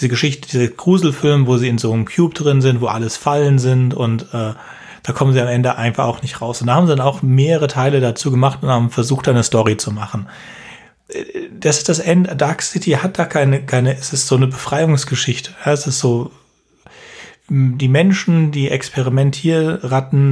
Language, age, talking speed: English, 30-49, 195 wpm